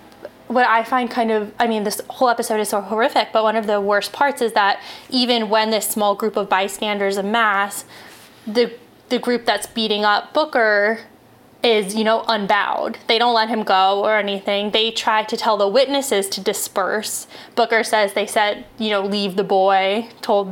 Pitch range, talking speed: 205-235 Hz, 190 wpm